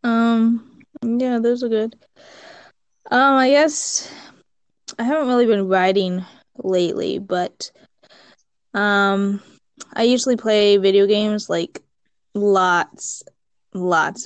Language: English